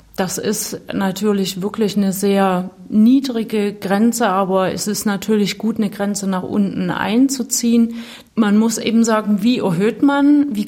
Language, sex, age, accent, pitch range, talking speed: German, female, 30-49, German, 200-240 Hz, 145 wpm